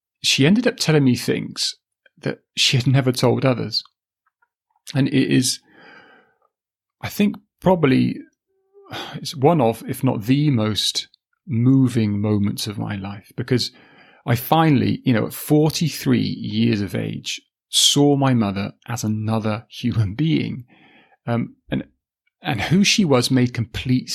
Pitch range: 120-150 Hz